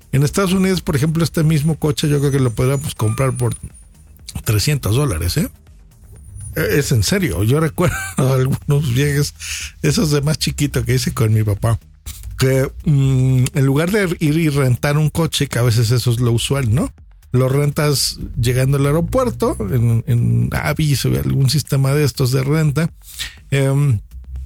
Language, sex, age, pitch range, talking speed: Spanish, male, 50-69, 115-150 Hz, 170 wpm